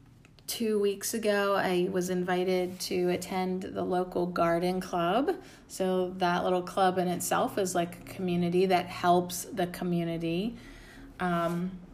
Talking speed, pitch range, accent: 135 wpm, 175-200 Hz, American